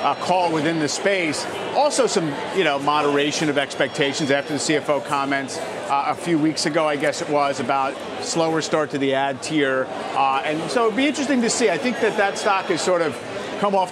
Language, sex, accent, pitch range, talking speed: English, male, American, 135-165 Hz, 215 wpm